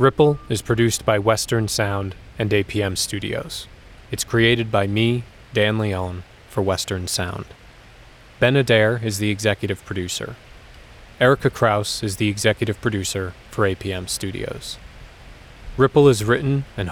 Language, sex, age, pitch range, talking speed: English, male, 20-39, 100-120 Hz, 130 wpm